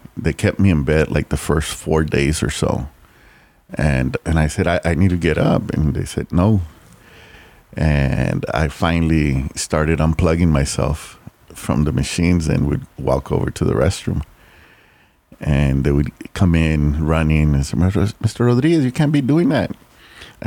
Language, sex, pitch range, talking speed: English, male, 75-95 Hz, 170 wpm